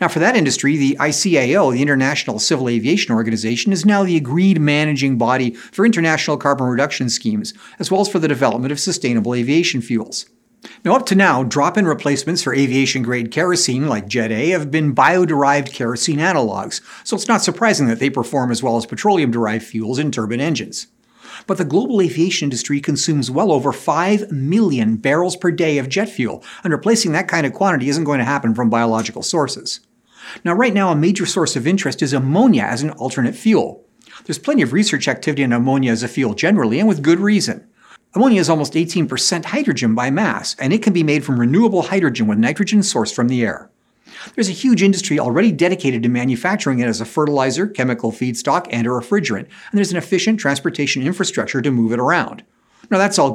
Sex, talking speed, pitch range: male, 195 wpm, 125-190 Hz